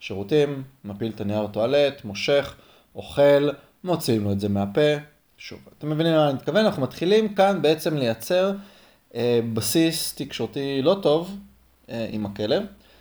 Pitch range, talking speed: 105-150 Hz, 145 wpm